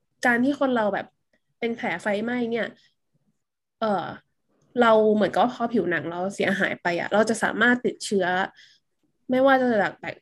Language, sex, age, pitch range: Thai, female, 20-39, 195-245 Hz